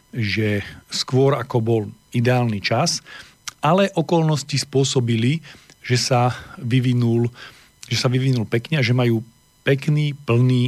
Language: Slovak